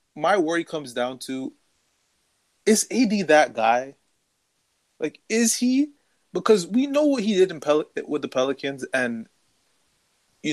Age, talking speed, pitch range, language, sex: 20-39, 130 wpm, 130-205 Hz, English, male